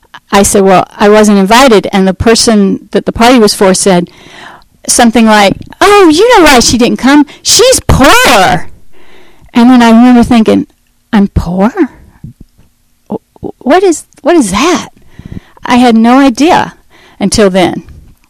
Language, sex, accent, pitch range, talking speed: English, female, American, 205-255 Hz, 145 wpm